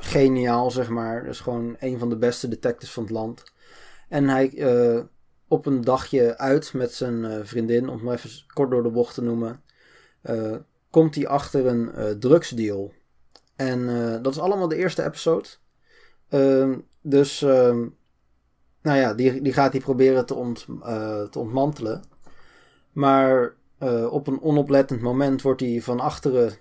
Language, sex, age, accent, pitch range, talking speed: Dutch, male, 20-39, Dutch, 115-140 Hz, 170 wpm